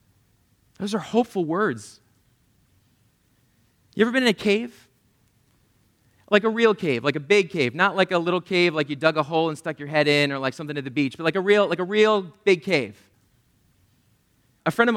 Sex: male